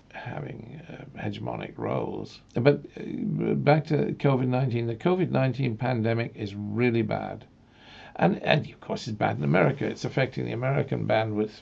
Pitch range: 110-125 Hz